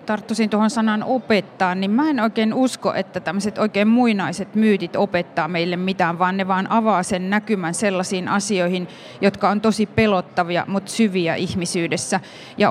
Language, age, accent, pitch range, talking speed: Finnish, 30-49, native, 180-205 Hz, 155 wpm